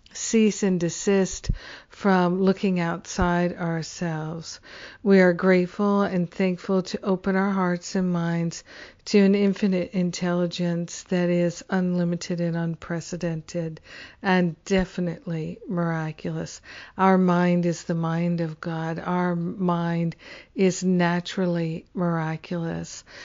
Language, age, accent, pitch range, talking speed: English, 50-69, American, 170-190 Hz, 110 wpm